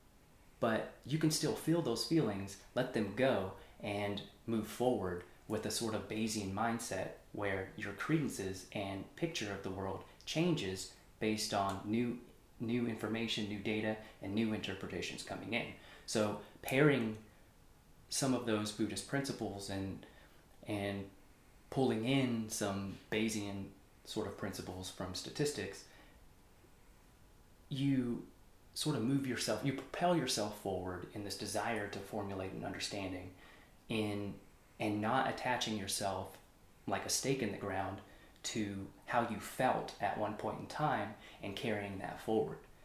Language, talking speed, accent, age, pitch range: English, 135 wpm, American, 30-49, 100-115 Hz